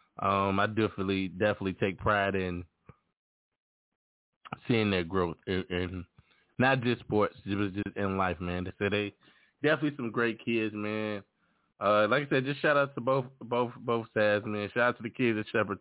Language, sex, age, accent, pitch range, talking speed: English, male, 20-39, American, 90-110 Hz, 185 wpm